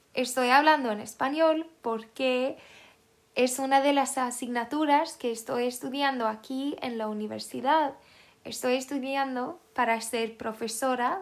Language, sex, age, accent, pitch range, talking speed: Swedish, female, 10-29, Spanish, 235-285 Hz, 120 wpm